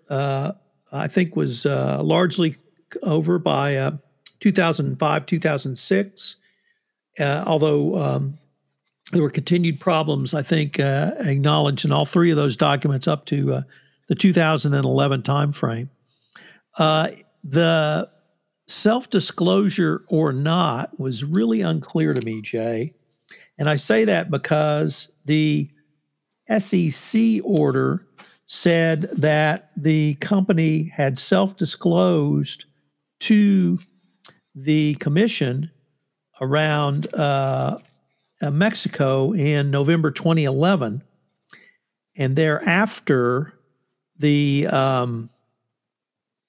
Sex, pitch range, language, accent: male, 140-175 Hz, English, American